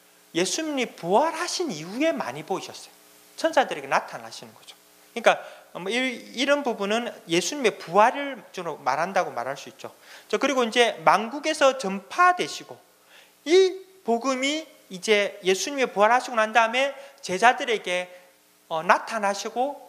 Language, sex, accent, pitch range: Korean, male, native, 190-290 Hz